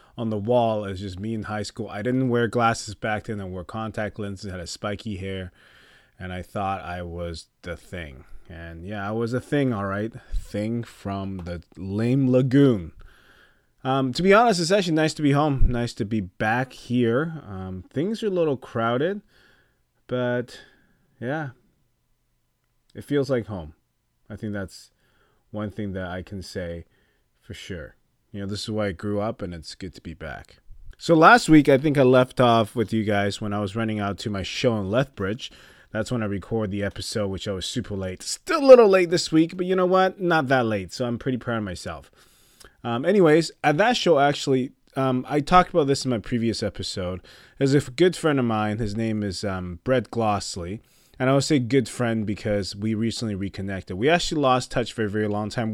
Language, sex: English, male